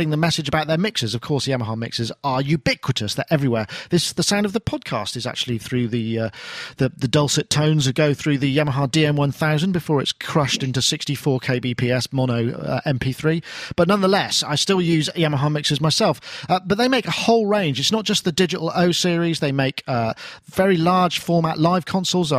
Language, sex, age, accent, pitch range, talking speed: English, male, 40-59, British, 130-165 Hz, 190 wpm